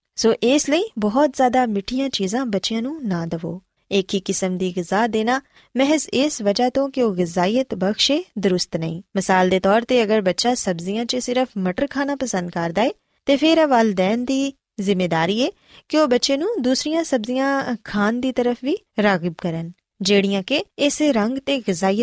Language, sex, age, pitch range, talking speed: Punjabi, female, 20-39, 195-270 Hz, 110 wpm